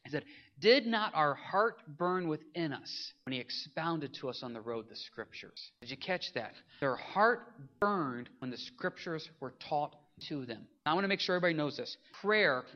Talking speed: 200 wpm